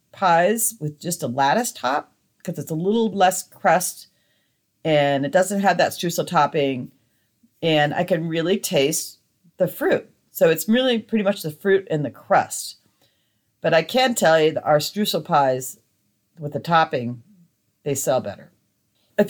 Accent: American